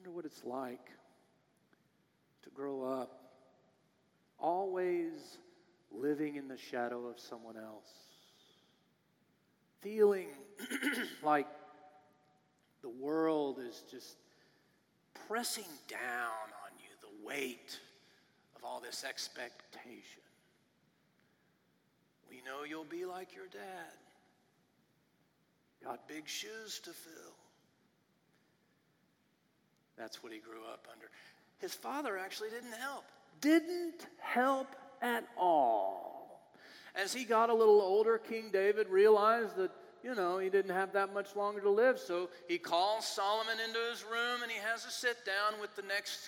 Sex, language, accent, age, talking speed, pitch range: male, English, American, 40-59, 120 wpm, 175-235 Hz